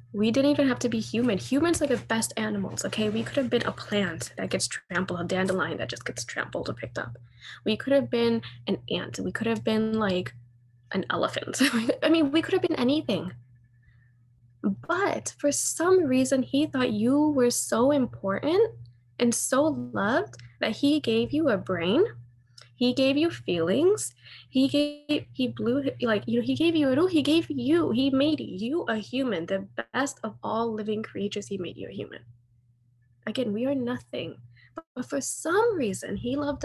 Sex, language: female, English